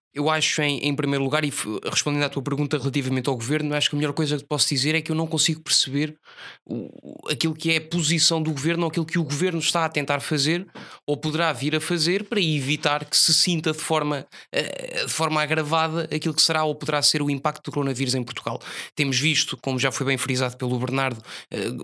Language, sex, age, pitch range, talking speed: Portuguese, male, 20-39, 135-155 Hz, 215 wpm